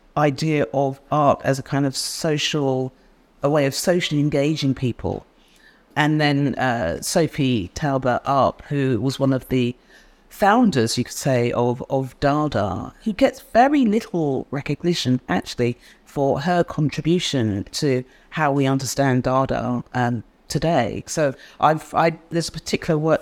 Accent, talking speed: British, 135 wpm